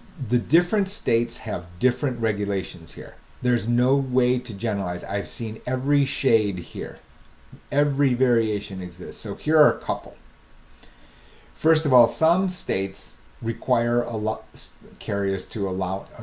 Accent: American